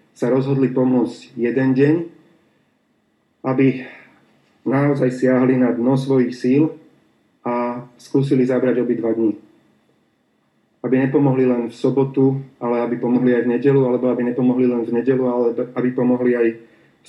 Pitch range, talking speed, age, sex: 120-130 Hz, 140 wpm, 30-49, male